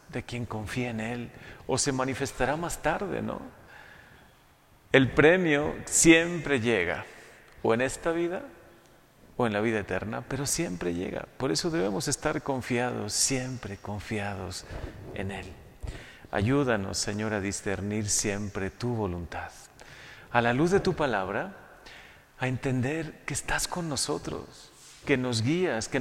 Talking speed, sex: 135 wpm, male